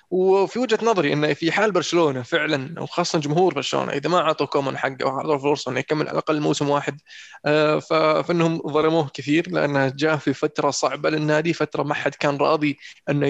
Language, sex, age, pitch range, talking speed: Arabic, male, 20-39, 145-170 Hz, 170 wpm